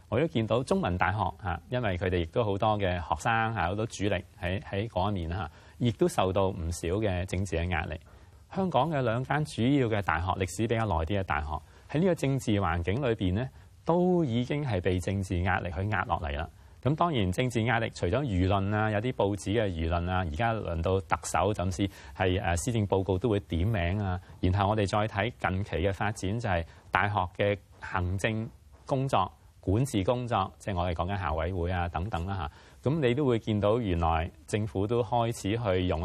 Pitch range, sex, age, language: 90-110 Hz, male, 30-49, Chinese